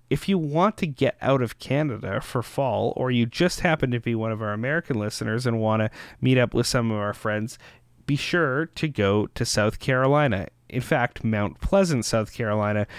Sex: male